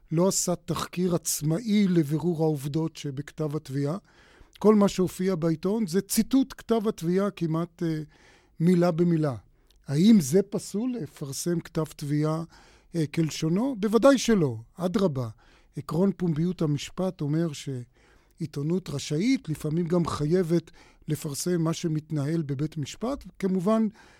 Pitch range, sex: 150-185 Hz, male